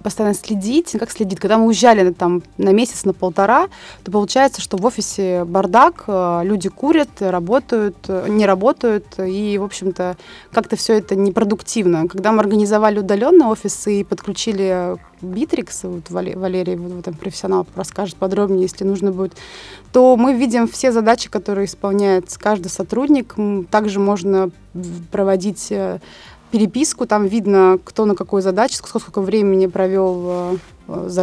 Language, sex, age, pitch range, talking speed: Russian, female, 20-39, 190-225 Hz, 130 wpm